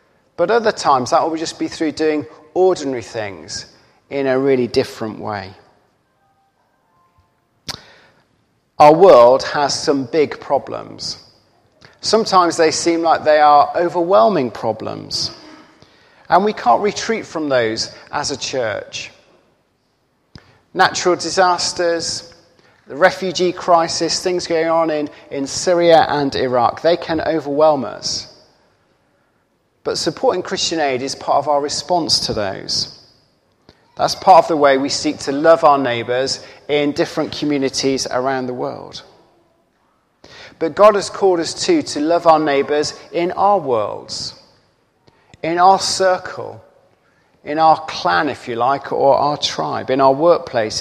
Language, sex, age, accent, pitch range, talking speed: English, male, 40-59, British, 135-170 Hz, 130 wpm